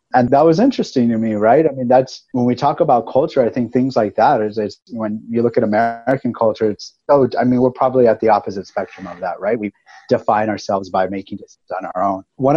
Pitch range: 100-120 Hz